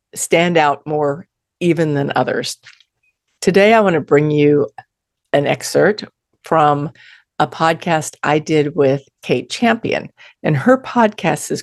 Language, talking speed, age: English, 135 wpm, 50-69